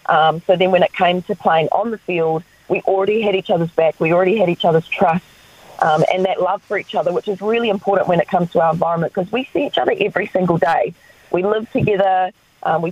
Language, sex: English, female